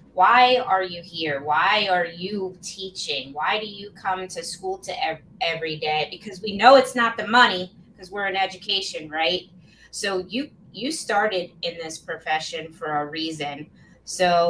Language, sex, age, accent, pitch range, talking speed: English, female, 20-39, American, 165-190 Hz, 160 wpm